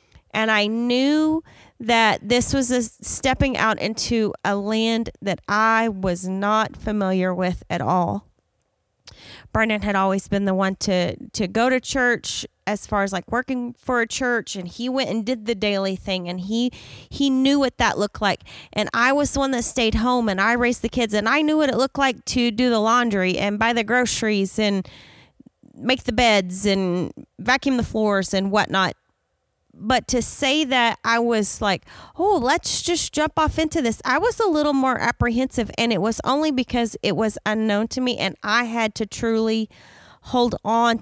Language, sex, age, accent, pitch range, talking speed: English, female, 30-49, American, 195-245 Hz, 190 wpm